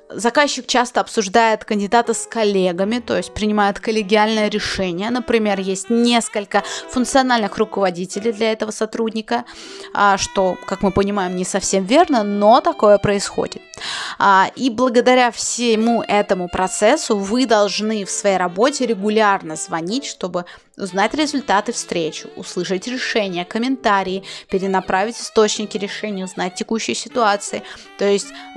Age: 20-39